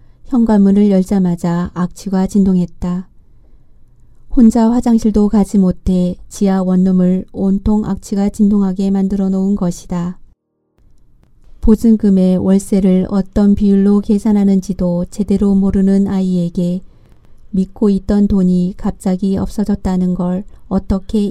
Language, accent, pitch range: Korean, native, 180-205 Hz